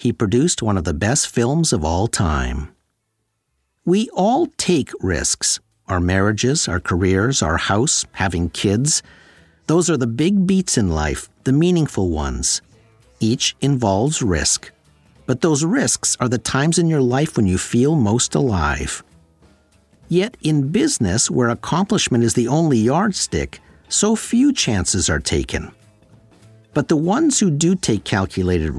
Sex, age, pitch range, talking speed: male, 50-69, 95-160 Hz, 145 wpm